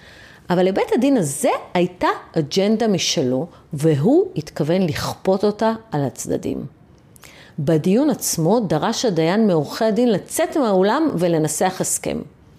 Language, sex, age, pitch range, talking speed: Hebrew, female, 40-59, 175-250 Hz, 110 wpm